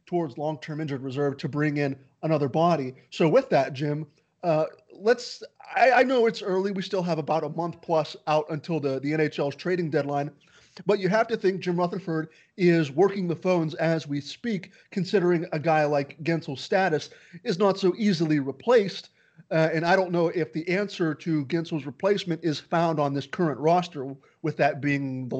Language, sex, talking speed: English, male, 185 wpm